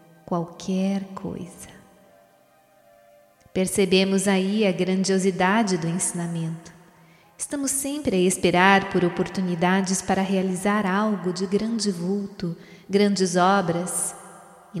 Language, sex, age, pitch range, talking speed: Portuguese, female, 20-39, 175-205 Hz, 95 wpm